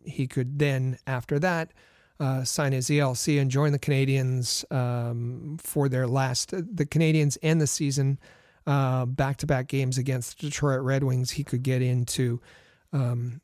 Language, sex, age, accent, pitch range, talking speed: English, male, 40-59, American, 130-150 Hz, 155 wpm